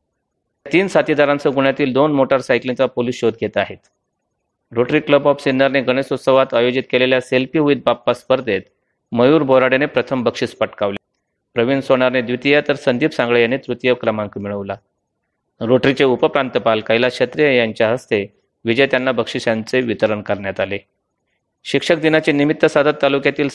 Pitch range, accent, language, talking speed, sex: 115-135 Hz, native, Marathi, 100 wpm, male